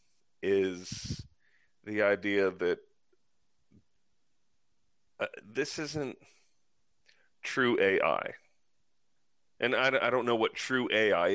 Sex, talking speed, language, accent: male, 90 wpm, English, American